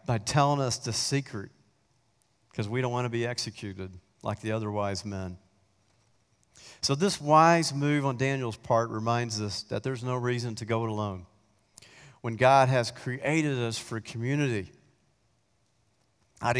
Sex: male